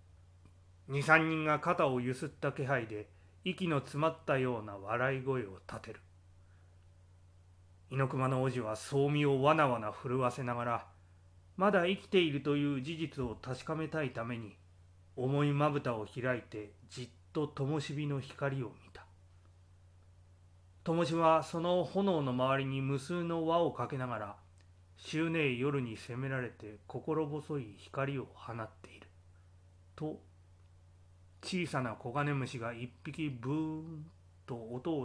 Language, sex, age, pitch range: Japanese, male, 30-49, 90-140 Hz